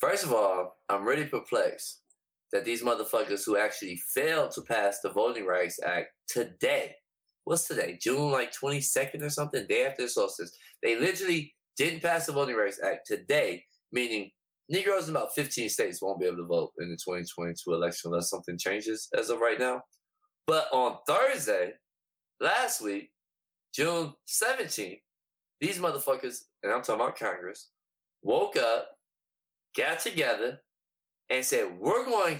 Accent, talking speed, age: American, 155 wpm, 20-39